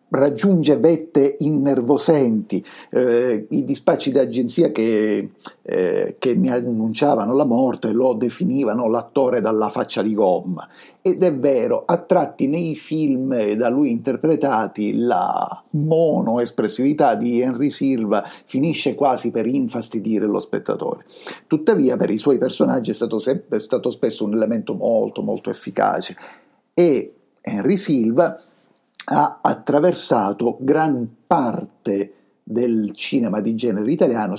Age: 50-69